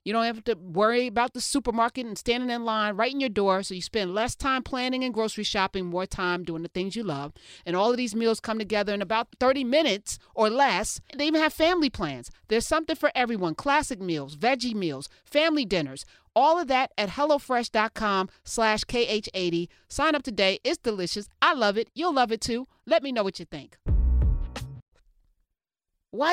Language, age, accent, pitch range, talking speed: English, 30-49, American, 210-320 Hz, 195 wpm